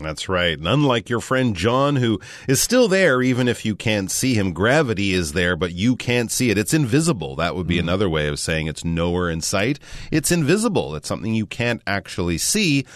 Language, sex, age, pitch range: Chinese, male, 30-49, 90-125 Hz